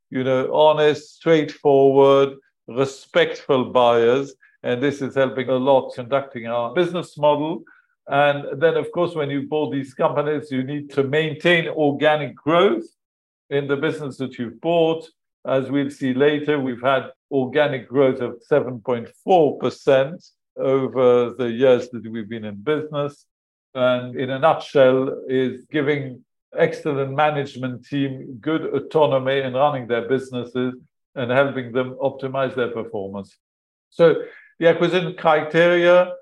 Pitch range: 130-150 Hz